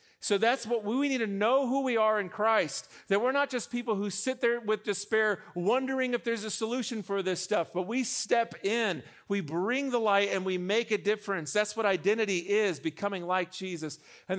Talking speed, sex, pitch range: 215 wpm, male, 180-225 Hz